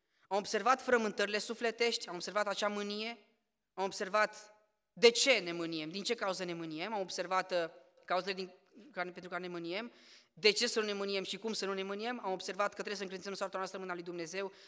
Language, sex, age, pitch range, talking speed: Romanian, female, 20-39, 170-210 Hz, 205 wpm